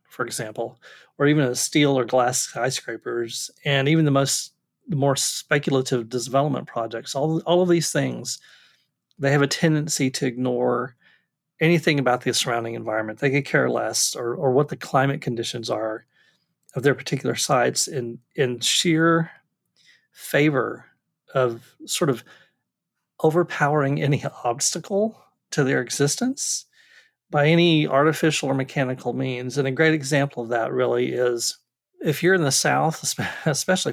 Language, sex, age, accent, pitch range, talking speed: English, male, 40-59, American, 125-160 Hz, 145 wpm